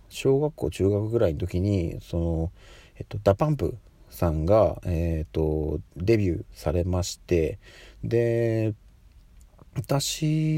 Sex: male